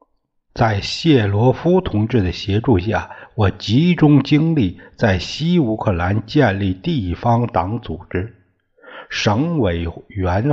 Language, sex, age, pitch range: Chinese, male, 60-79, 95-140 Hz